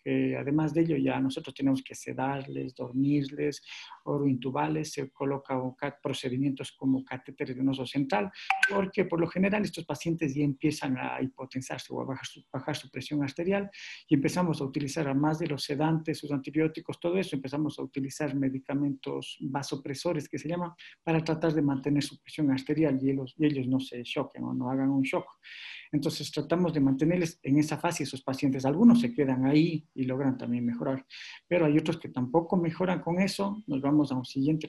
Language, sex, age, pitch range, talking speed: Spanish, male, 50-69, 135-160 Hz, 185 wpm